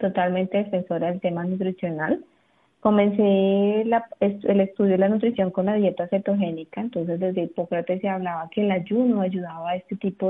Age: 20-39